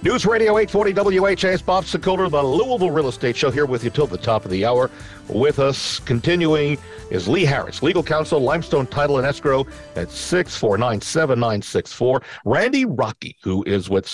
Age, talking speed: 50-69, 165 wpm